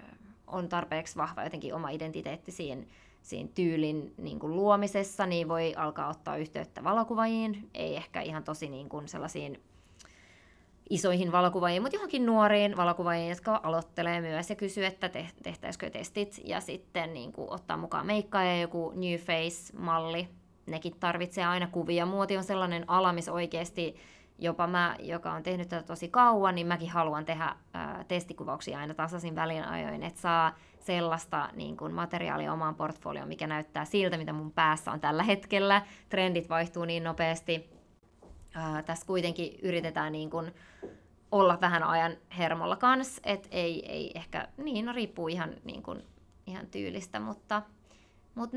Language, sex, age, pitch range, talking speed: Finnish, female, 20-39, 160-190 Hz, 150 wpm